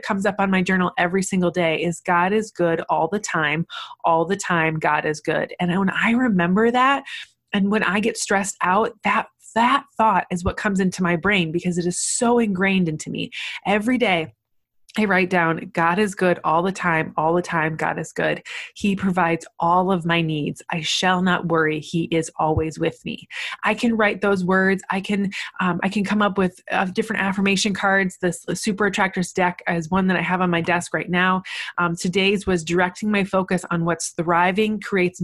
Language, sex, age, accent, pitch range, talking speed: English, female, 20-39, American, 175-205 Hz, 210 wpm